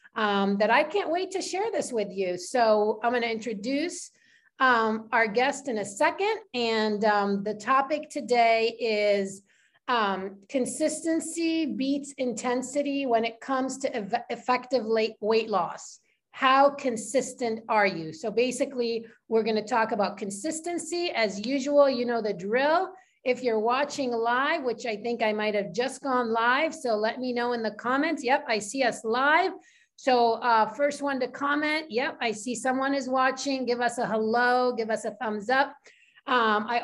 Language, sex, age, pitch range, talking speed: English, female, 40-59, 225-275 Hz, 165 wpm